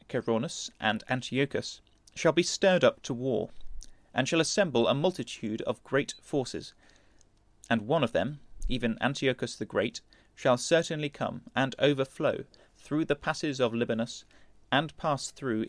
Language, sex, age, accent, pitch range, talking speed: English, male, 30-49, British, 110-140 Hz, 145 wpm